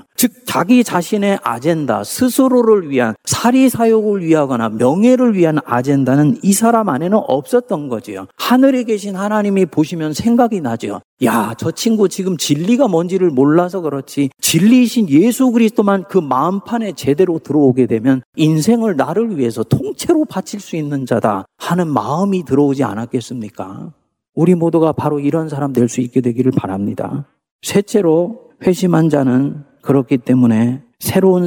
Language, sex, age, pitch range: Korean, male, 40-59, 135-210 Hz